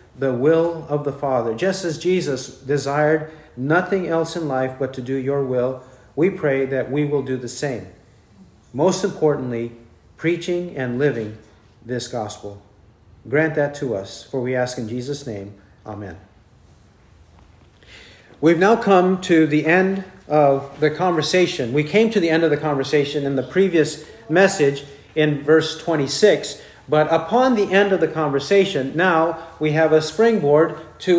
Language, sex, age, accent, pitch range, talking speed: English, male, 50-69, American, 130-175 Hz, 155 wpm